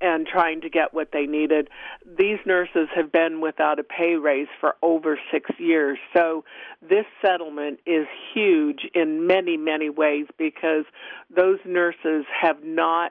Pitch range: 155-190 Hz